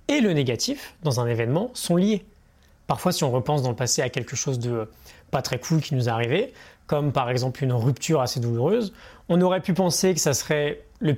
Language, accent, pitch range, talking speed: French, French, 130-175 Hz, 220 wpm